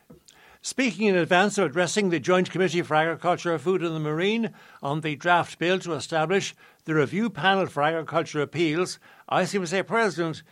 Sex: male